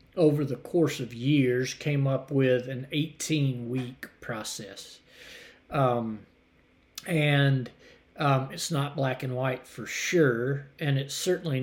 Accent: American